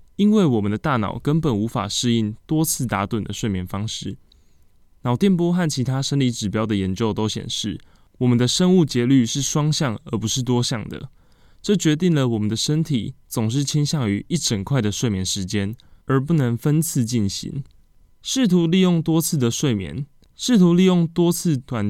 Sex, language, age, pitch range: male, Chinese, 20-39, 110-145 Hz